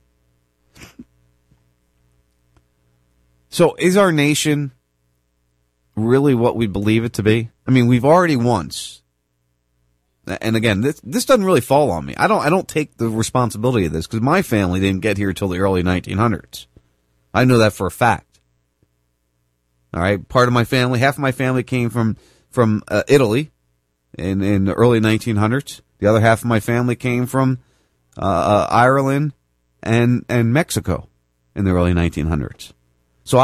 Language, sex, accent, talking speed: English, male, American, 160 wpm